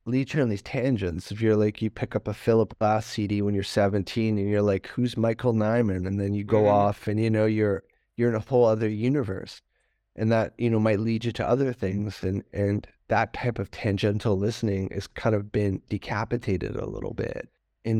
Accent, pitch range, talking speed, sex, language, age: American, 105-115 Hz, 215 wpm, male, English, 30-49